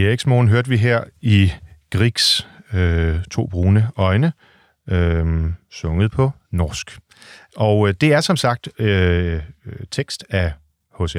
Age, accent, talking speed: 40-59, native, 125 wpm